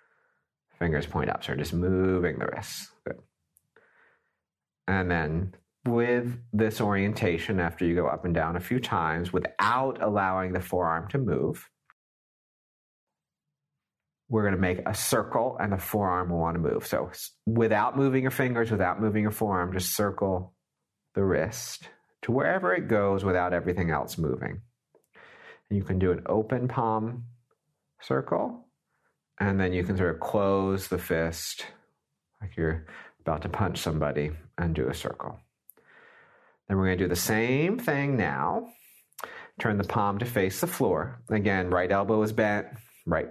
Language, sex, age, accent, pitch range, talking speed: English, male, 40-59, American, 90-110 Hz, 155 wpm